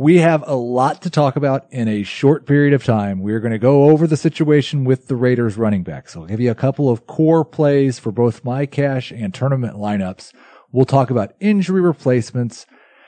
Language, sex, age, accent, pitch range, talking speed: English, male, 30-49, American, 115-165 Hz, 210 wpm